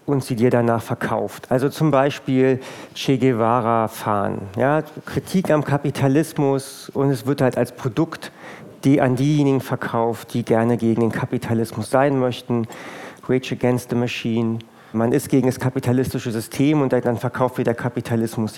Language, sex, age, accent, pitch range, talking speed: German, male, 40-59, German, 120-150 Hz, 150 wpm